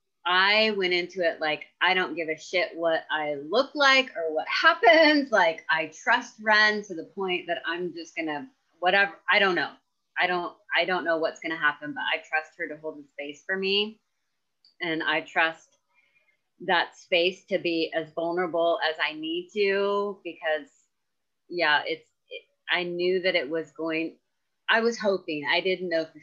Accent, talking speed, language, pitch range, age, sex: American, 190 wpm, English, 155-195 Hz, 30-49, female